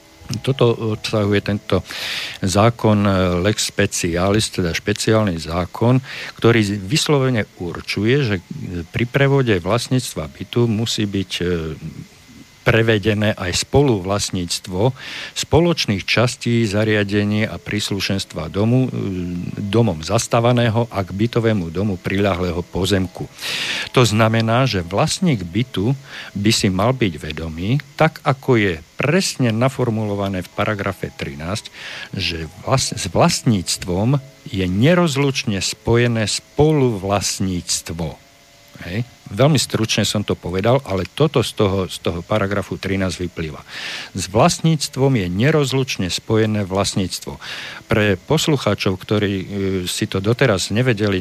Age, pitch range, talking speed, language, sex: 50-69, 95-120 Hz, 105 wpm, Slovak, male